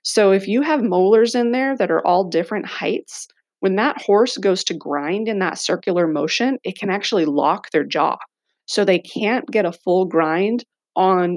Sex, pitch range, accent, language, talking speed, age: female, 170-205 Hz, American, English, 190 wpm, 30-49